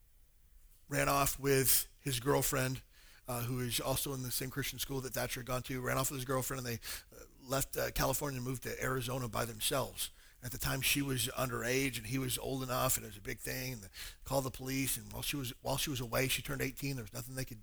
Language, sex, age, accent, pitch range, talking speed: English, male, 40-59, American, 120-165 Hz, 250 wpm